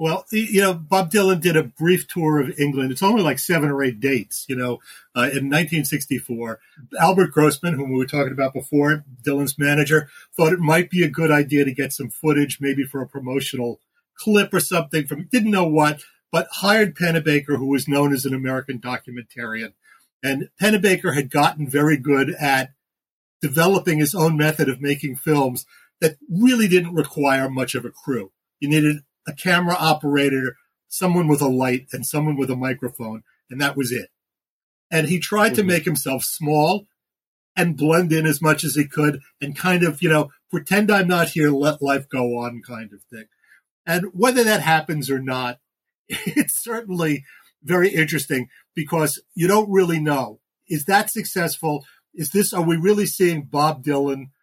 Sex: male